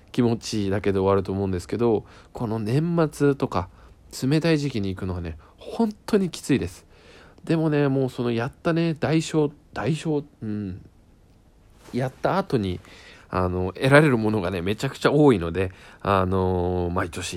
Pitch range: 90-135 Hz